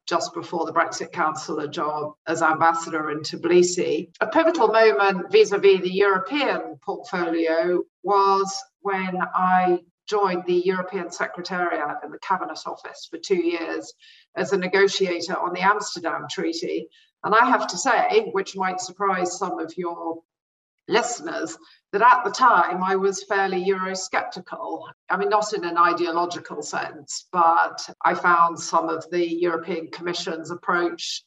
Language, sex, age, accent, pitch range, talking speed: English, female, 50-69, British, 175-265 Hz, 145 wpm